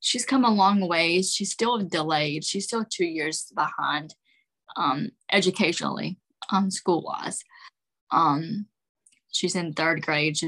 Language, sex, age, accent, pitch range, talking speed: English, female, 10-29, American, 170-215 Hz, 130 wpm